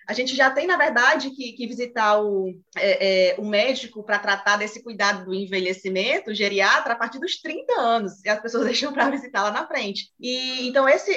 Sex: female